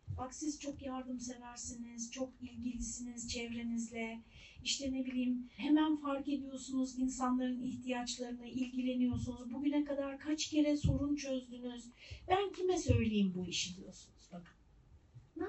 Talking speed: 120 wpm